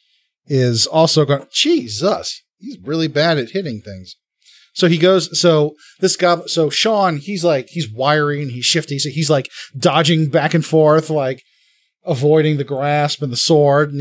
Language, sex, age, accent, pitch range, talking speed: English, male, 30-49, American, 135-170 Hz, 170 wpm